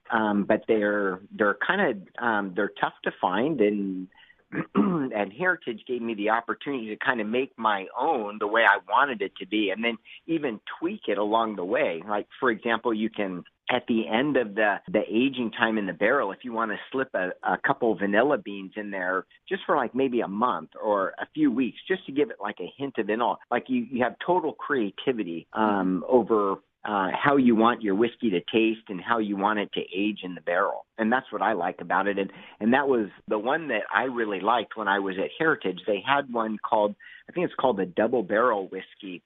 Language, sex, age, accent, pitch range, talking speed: English, male, 40-59, American, 100-125 Hz, 225 wpm